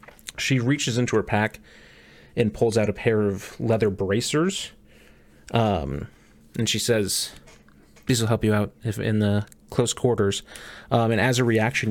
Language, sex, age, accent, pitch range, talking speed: English, male, 30-49, American, 100-120 Hz, 160 wpm